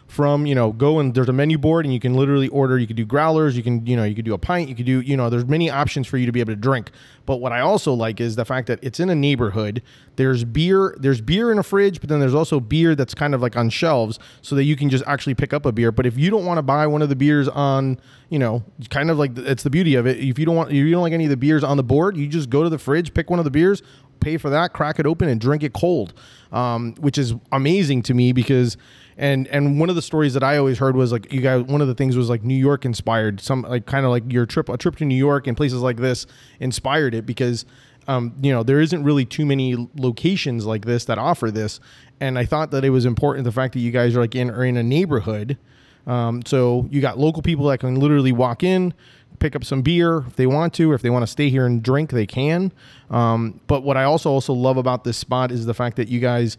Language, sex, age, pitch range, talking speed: English, male, 20-39, 125-145 Hz, 285 wpm